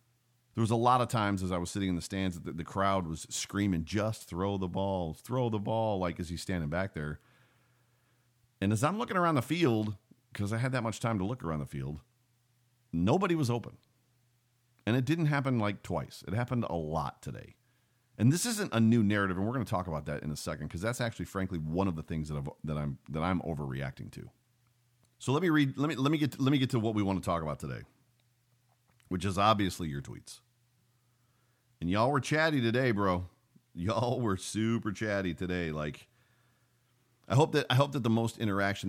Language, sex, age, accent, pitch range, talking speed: English, male, 40-59, American, 95-125 Hz, 220 wpm